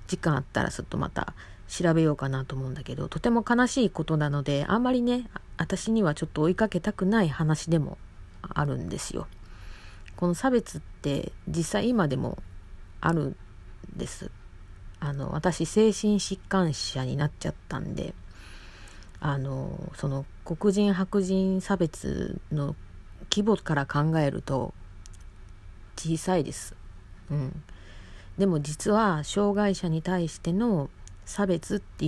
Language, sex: Japanese, female